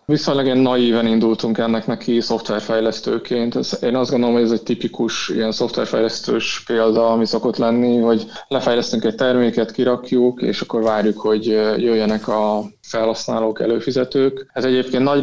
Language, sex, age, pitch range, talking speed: Hungarian, male, 20-39, 110-125 Hz, 140 wpm